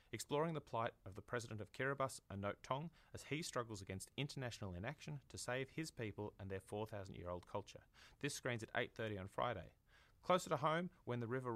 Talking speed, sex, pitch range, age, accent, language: 185 wpm, male, 100-135 Hz, 30-49, Australian, English